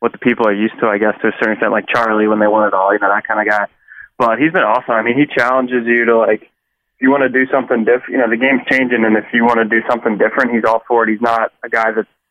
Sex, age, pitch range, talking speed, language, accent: male, 20-39, 110-120 Hz, 315 wpm, English, American